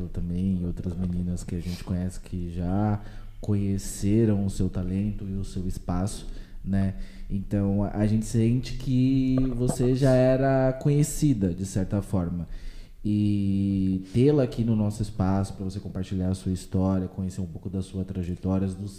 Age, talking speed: 20-39, 160 wpm